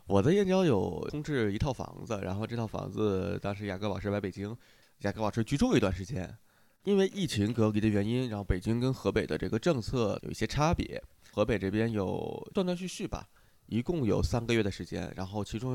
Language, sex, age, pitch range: Chinese, male, 20-39, 100-130 Hz